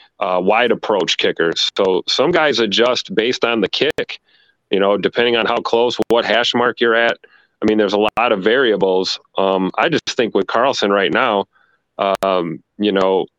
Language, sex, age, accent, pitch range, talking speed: English, male, 30-49, American, 95-120 Hz, 185 wpm